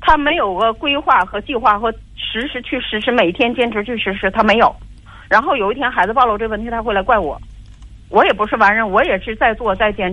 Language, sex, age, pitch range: Chinese, female, 40-59, 175-250 Hz